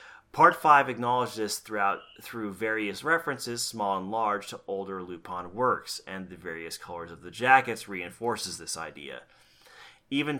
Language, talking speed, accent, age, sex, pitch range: English, 150 wpm, American, 30-49, male, 95-125 Hz